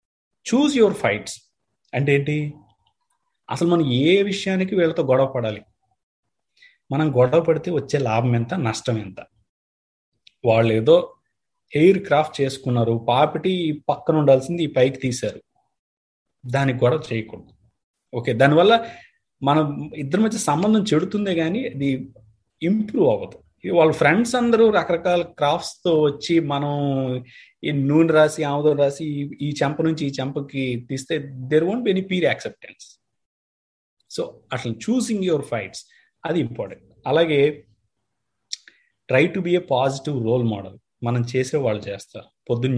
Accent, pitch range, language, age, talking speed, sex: native, 120-165 Hz, Telugu, 30-49, 140 wpm, male